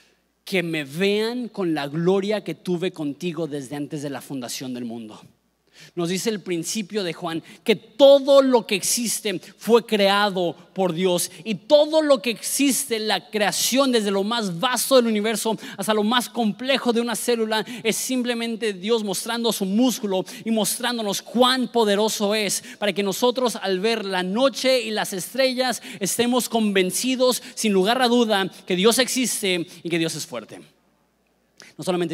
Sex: male